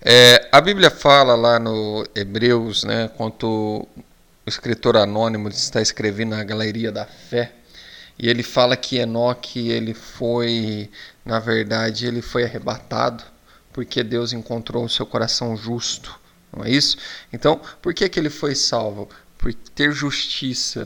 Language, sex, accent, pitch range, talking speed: Portuguese, male, Brazilian, 105-140 Hz, 145 wpm